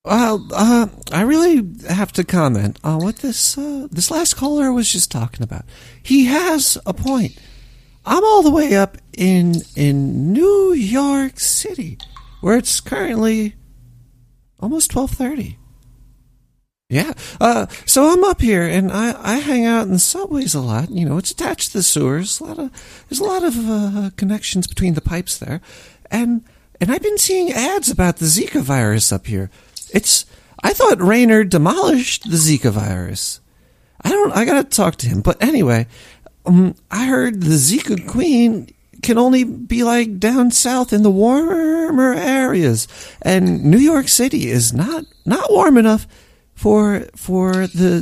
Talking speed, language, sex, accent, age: 165 wpm, English, male, American, 40-59